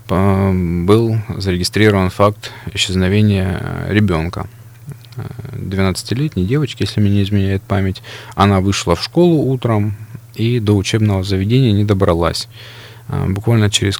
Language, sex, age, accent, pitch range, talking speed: Russian, male, 20-39, native, 95-115 Hz, 105 wpm